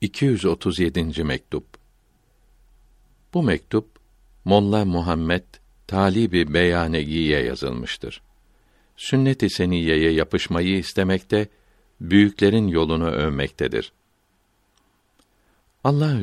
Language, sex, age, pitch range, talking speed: Turkish, male, 60-79, 85-105 Hz, 65 wpm